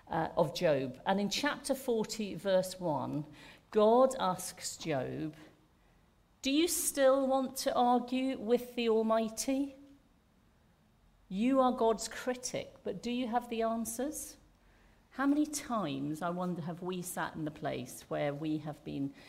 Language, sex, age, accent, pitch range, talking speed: English, female, 50-69, British, 155-225 Hz, 145 wpm